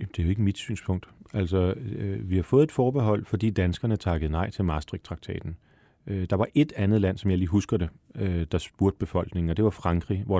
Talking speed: 225 wpm